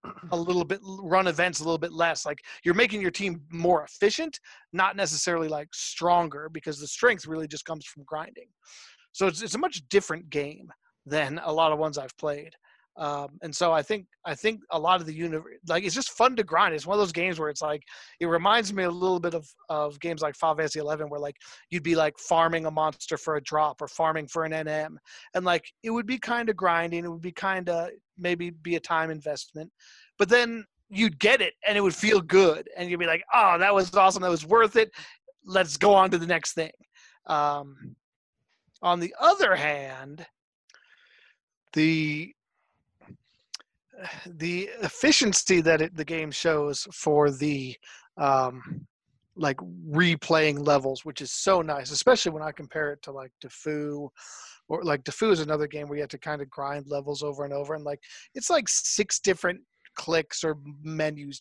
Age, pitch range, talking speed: 30-49, 150-190 Hz, 195 wpm